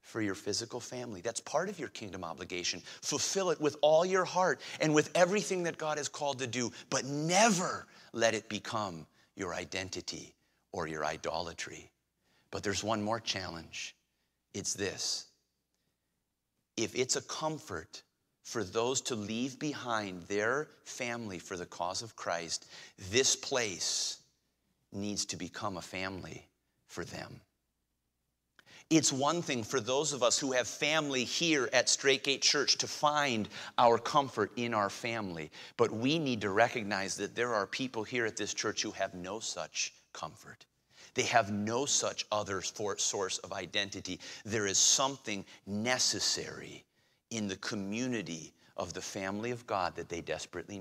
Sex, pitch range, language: male, 95-135 Hz, English